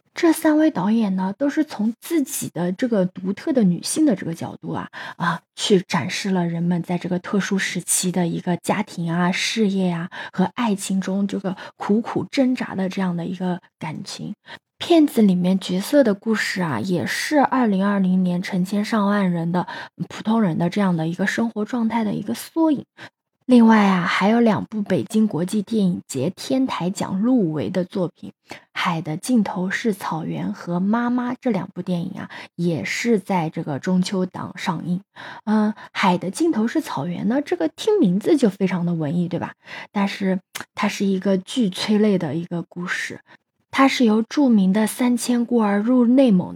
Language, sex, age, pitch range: Chinese, female, 20-39, 180-235 Hz